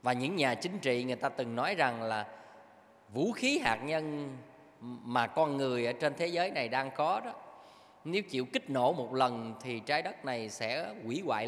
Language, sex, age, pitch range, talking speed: Vietnamese, male, 20-39, 125-185 Hz, 205 wpm